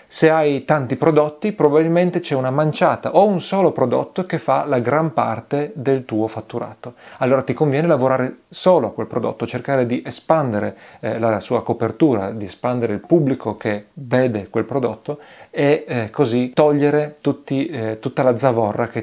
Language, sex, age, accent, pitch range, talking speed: Italian, male, 40-59, native, 115-150 Hz, 165 wpm